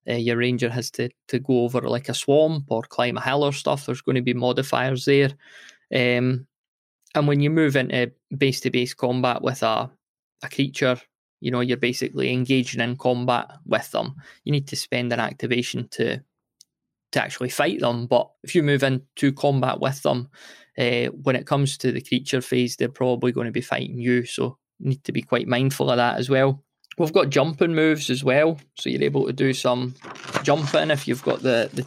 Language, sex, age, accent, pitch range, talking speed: English, male, 20-39, British, 125-140 Hz, 205 wpm